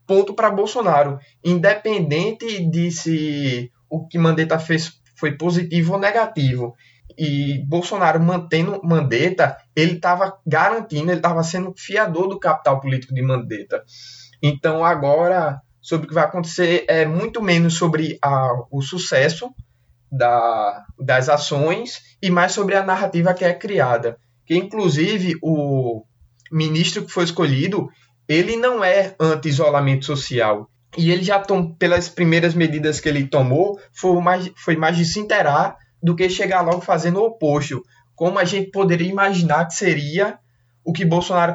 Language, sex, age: Portuguese, male, 20-39